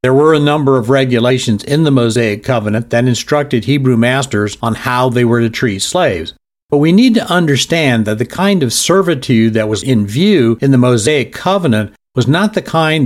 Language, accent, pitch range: English, American, 115-150 Hz